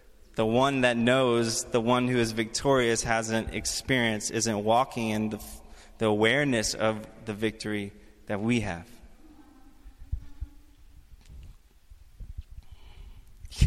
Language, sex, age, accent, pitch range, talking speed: English, male, 20-39, American, 100-120 Hz, 105 wpm